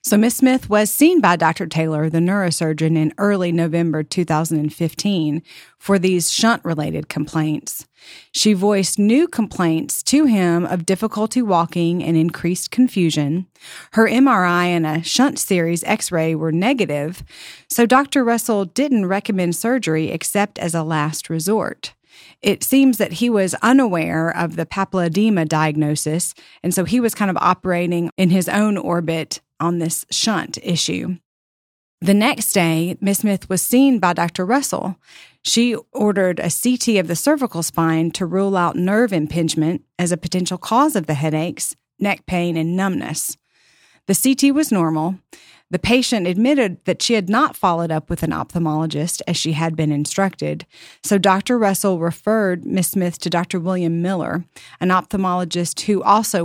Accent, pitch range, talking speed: American, 165-205 Hz, 155 wpm